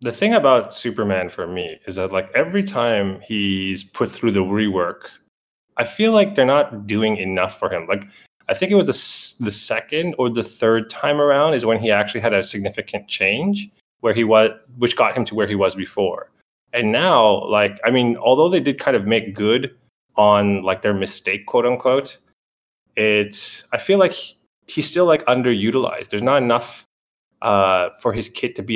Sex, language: male, English